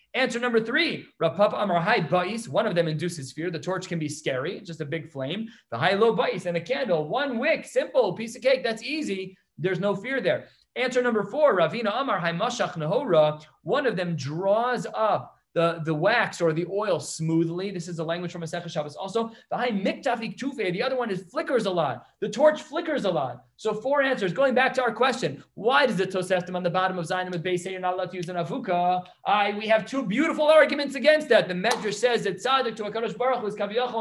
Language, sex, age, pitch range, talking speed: English, male, 30-49, 165-235 Hz, 215 wpm